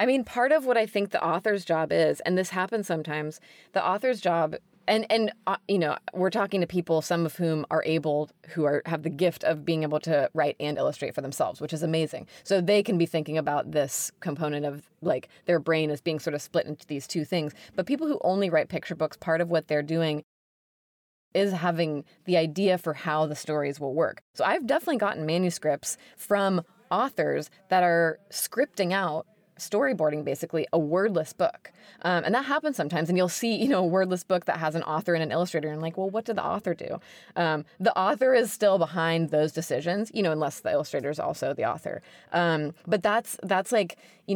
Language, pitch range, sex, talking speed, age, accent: English, 160-195 Hz, female, 215 wpm, 20-39, American